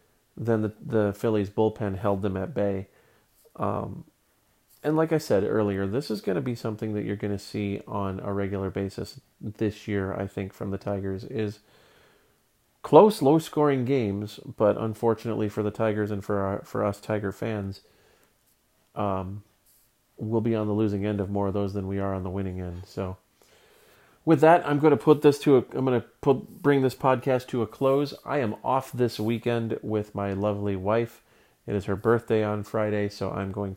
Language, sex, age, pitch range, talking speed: English, male, 30-49, 100-115 Hz, 190 wpm